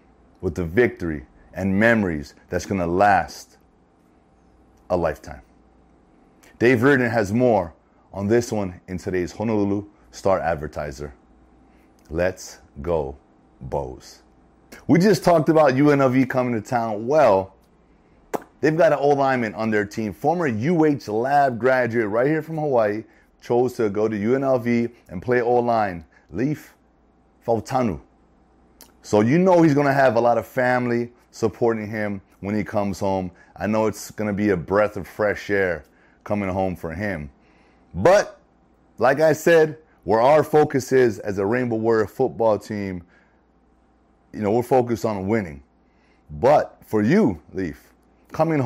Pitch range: 95-130 Hz